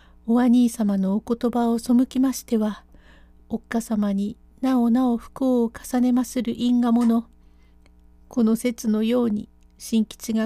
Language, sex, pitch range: Japanese, female, 205-250 Hz